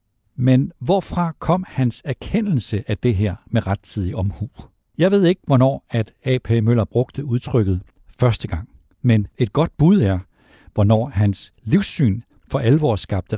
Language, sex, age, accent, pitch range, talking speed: Danish, male, 60-79, native, 105-145 Hz, 150 wpm